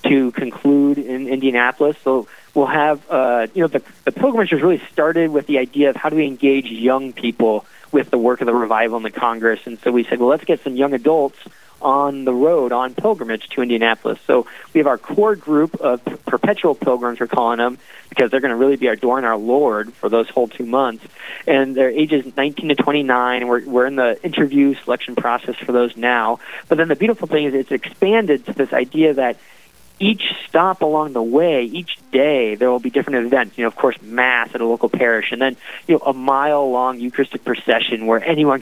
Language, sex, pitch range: English, male, 120-145 Hz